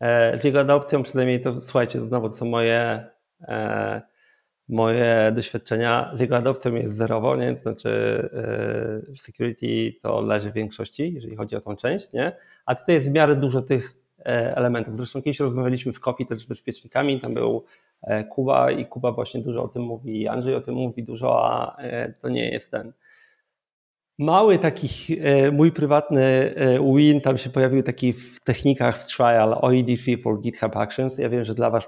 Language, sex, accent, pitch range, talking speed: Polish, male, native, 115-135 Hz, 180 wpm